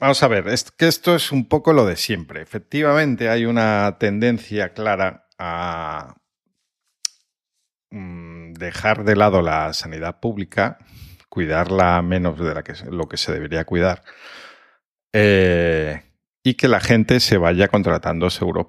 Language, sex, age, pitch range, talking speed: Spanish, male, 50-69, 85-120 Hz, 130 wpm